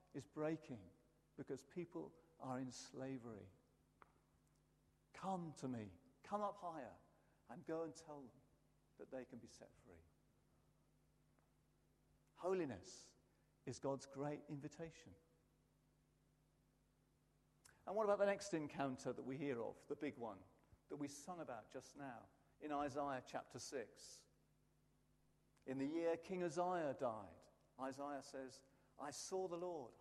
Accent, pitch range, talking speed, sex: British, 135-190 Hz, 130 wpm, male